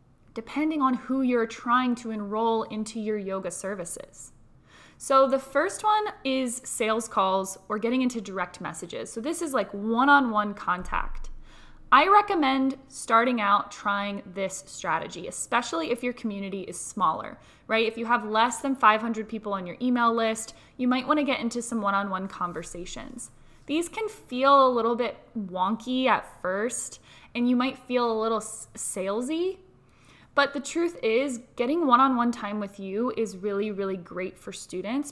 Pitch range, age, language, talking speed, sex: 205-260 Hz, 20-39, English, 160 wpm, female